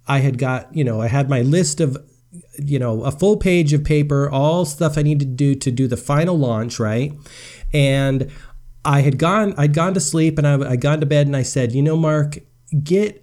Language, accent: English, American